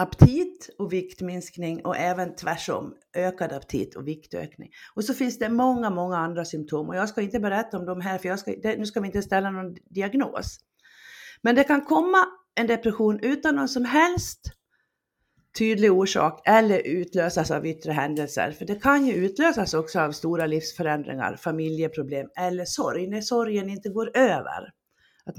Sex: female